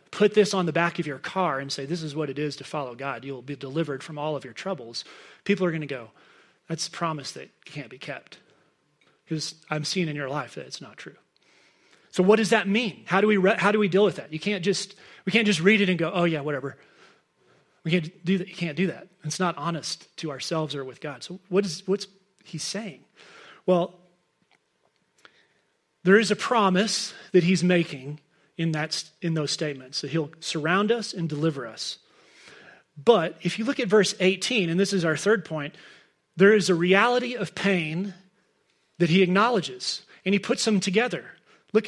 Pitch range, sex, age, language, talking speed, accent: 160-200 Hz, male, 30-49, English, 210 wpm, American